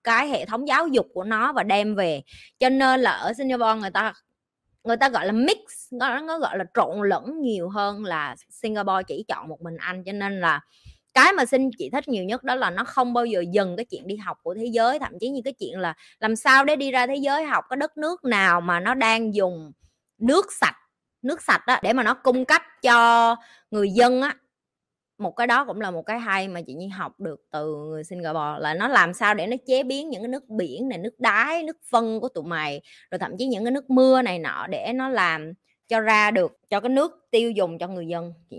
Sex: female